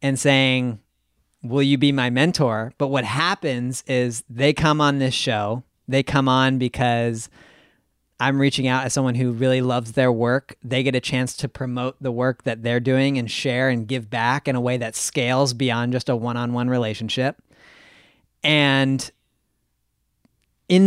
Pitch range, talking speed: 120-140 Hz, 165 wpm